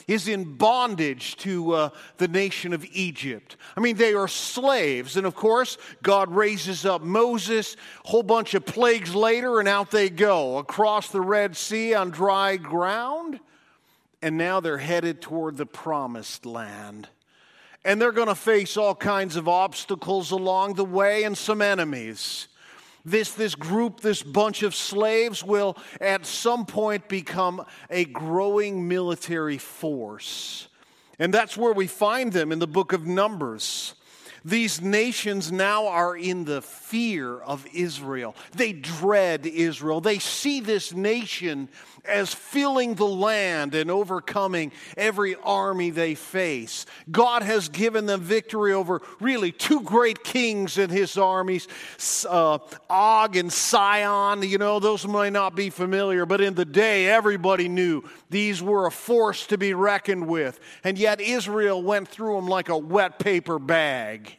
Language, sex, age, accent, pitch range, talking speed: English, male, 50-69, American, 175-215 Hz, 150 wpm